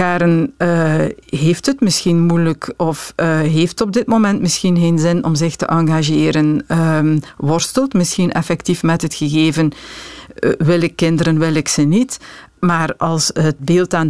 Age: 50-69